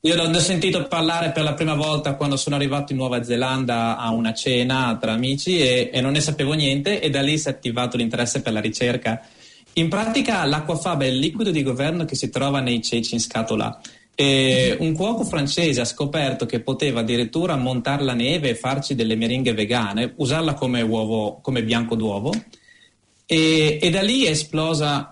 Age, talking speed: 30-49, 190 wpm